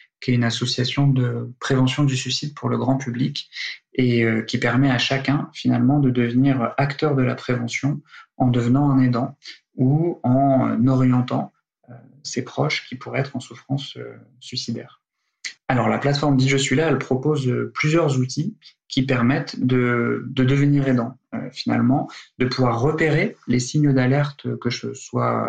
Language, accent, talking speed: French, French, 155 wpm